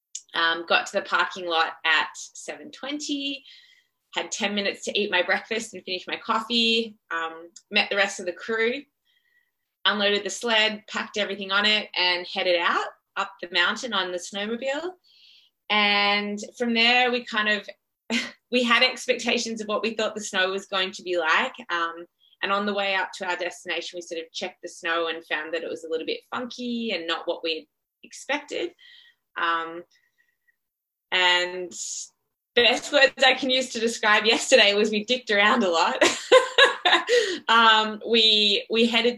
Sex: female